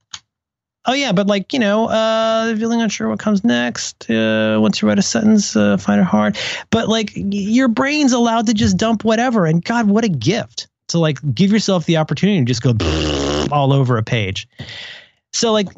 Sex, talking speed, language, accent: male, 195 wpm, English, American